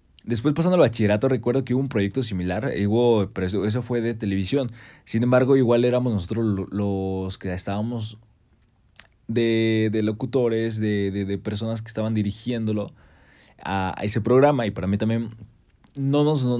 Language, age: Spanish, 20-39